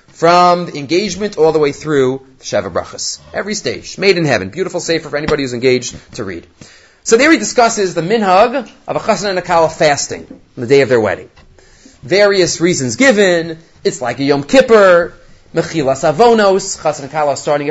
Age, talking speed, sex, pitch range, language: 30-49, 185 wpm, male, 135-195 Hz, English